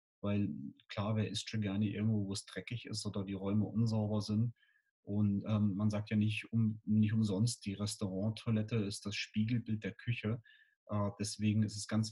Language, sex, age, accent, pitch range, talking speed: German, male, 30-49, German, 100-110 Hz, 180 wpm